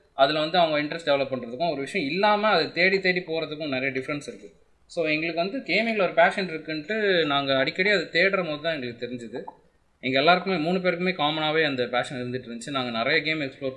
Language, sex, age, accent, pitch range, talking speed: Tamil, male, 20-39, native, 125-160 Hz, 185 wpm